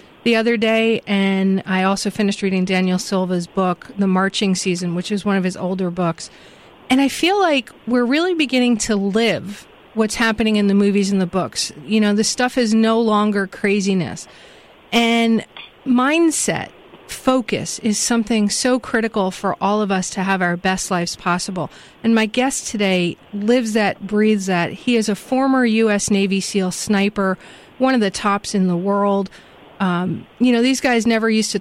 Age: 40-59